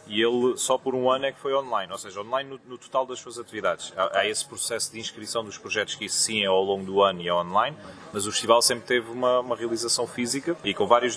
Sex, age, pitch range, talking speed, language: male, 30-49, 115-130 Hz, 270 wpm, Portuguese